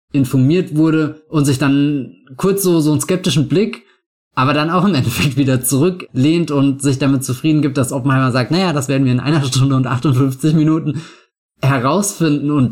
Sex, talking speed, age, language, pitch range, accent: male, 185 wpm, 20-39, German, 120-145 Hz, German